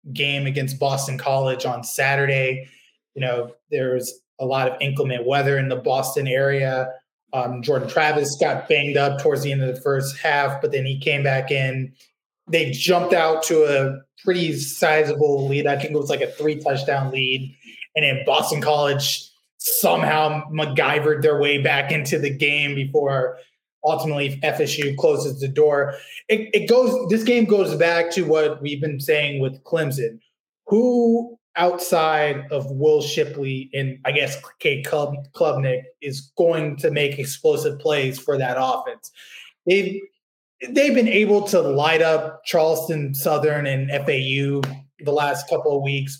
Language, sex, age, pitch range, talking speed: English, male, 20-39, 135-160 Hz, 160 wpm